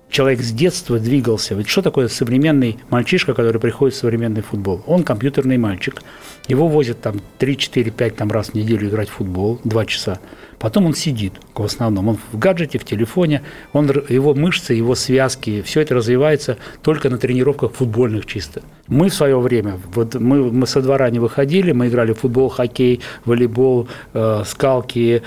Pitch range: 115-135 Hz